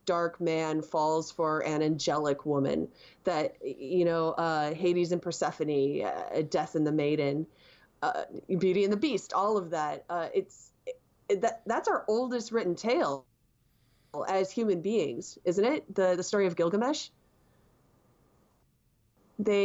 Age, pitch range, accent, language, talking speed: 30-49, 155-185 Hz, American, English, 135 wpm